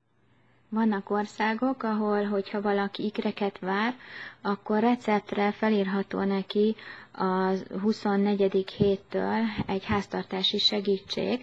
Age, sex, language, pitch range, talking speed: 20-39, female, Hungarian, 195-205 Hz, 90 wpm